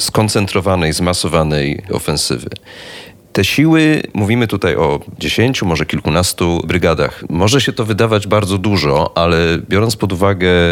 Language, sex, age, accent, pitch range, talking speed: Polish, male, 30-49, native, 90-115 Hz, 125 wpm